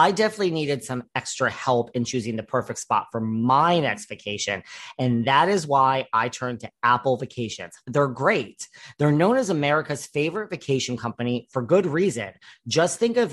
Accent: American